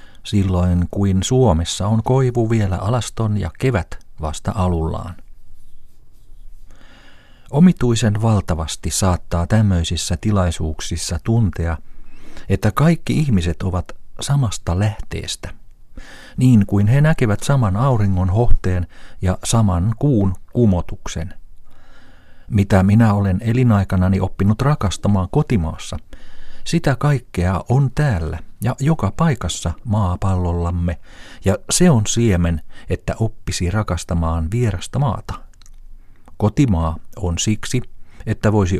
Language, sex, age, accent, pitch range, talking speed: Finnish, male, 50-69, native, 90-115 Hz, 95 wpm